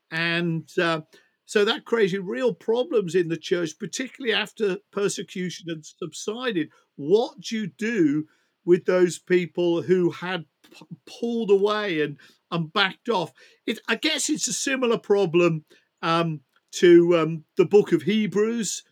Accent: British